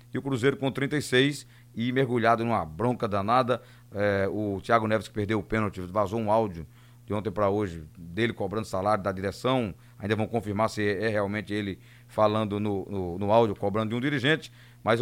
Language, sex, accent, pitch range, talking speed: Portuguese, male, Brazilian, 120-140 Hz, 185 wpm